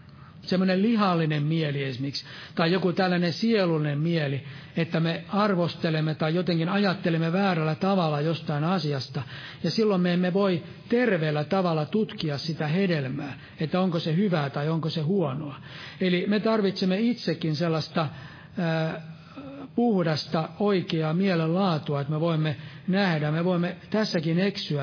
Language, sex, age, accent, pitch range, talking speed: Finnish, male, 60-79, native, 150-185 Hz, 130 wpm